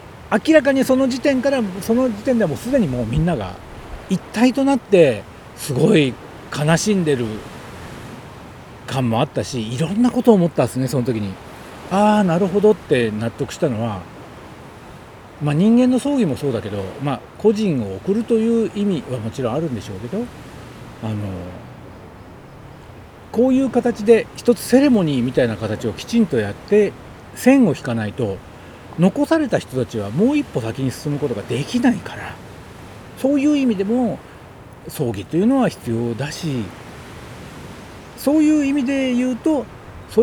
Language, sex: Japanese, male